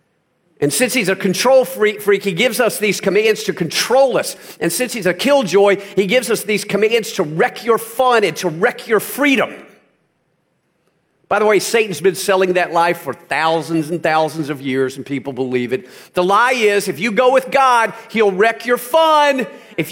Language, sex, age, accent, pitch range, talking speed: English, male, 40-59, American, 180-280 Hz, 195 wpm